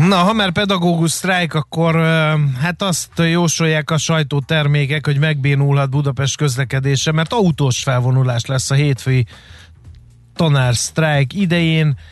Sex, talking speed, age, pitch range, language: male, 115 wpm, 30-49, 130-160 Hz, Hungarian